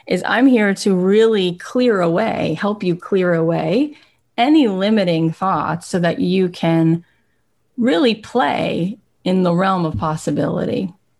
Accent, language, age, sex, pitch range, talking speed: American, English, 30-49, female, 160-195 Hz, 135 wpm